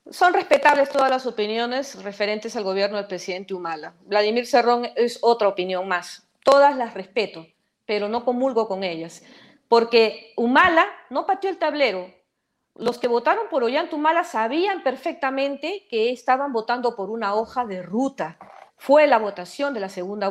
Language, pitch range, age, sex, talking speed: Spanish, 205-265 Hz, 40-59, female, 155 wpm